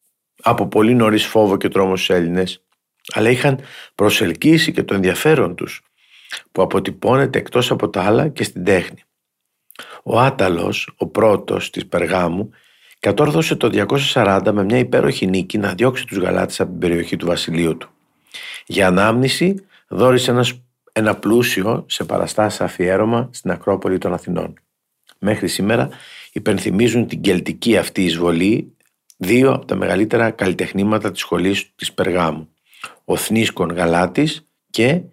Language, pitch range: Greek, 95-125 Hz